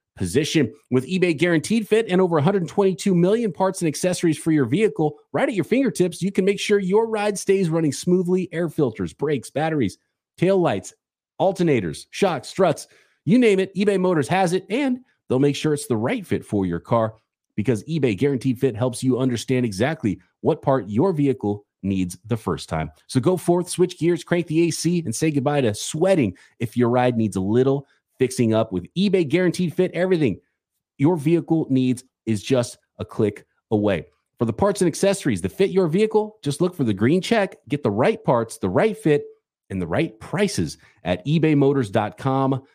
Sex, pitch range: male, 120-185 Hz